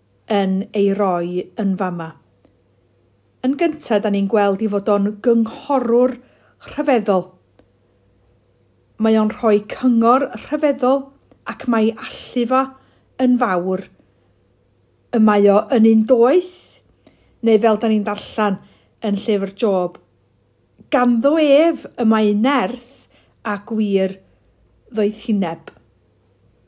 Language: English